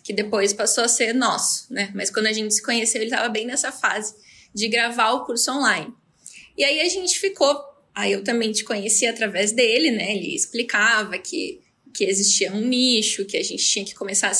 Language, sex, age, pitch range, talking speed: Portuguese, female, 20-39, 220-260 Hz, 210 wpm